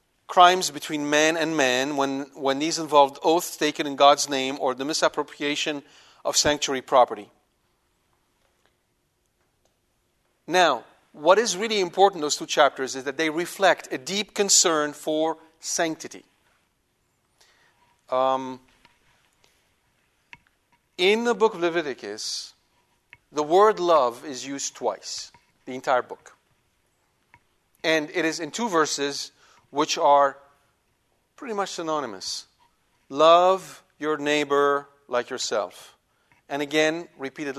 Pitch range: 140-170 Hz